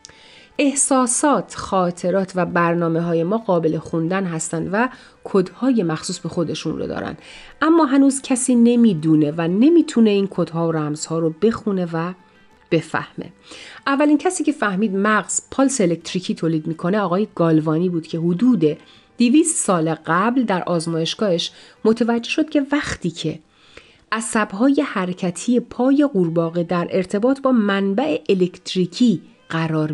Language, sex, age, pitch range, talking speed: Persian, female, 40-59, 165-235 Hz, 130 wpm